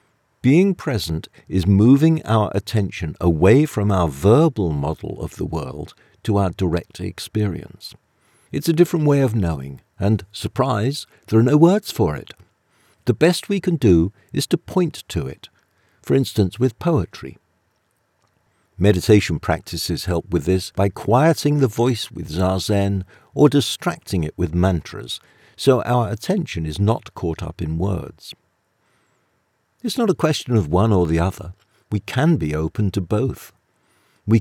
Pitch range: 90-130 Hz